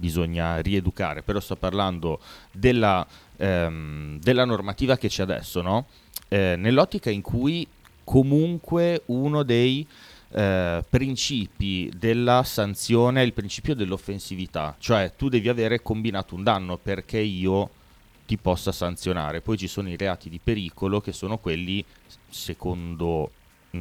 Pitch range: 90-120 Hz